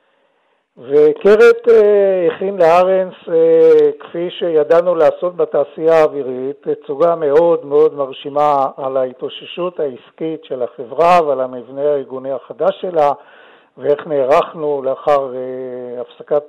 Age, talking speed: 60-79, 105 wpm